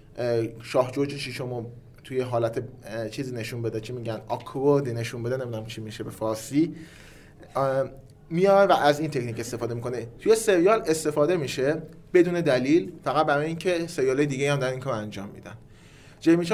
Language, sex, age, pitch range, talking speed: Persian, male, 30-49, 120-155 Hz, 165 wpm